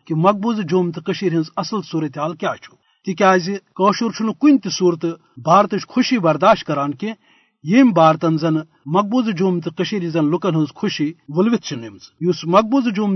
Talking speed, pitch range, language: 150 wpm, 165-205 Hz, Urdu